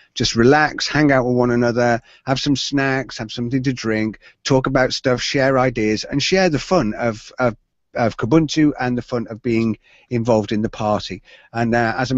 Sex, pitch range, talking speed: male, 120-150 Hz, 195 wpm